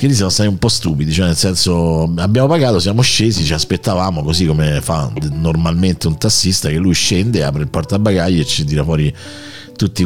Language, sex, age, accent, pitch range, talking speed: Italian, male, 50-69, native, 80-110 Hz, 185 wpm